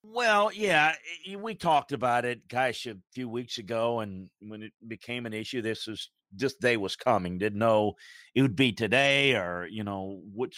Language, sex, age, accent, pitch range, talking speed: English, male, 50-69, American, 100-130 Hz, 185 wpm